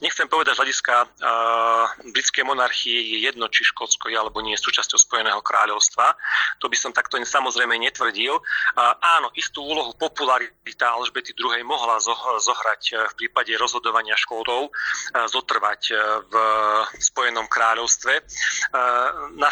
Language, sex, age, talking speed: Slovak, male, 30-49, 115 wpm